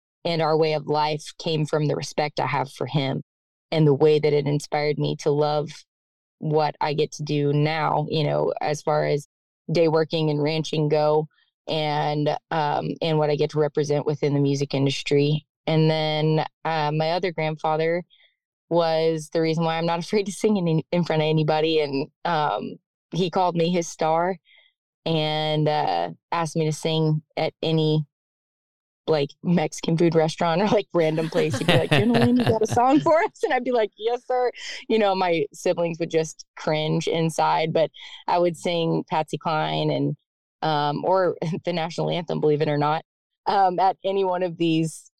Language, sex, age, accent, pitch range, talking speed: English, female, 20-39, American, 150-165 Hz, 185 wpm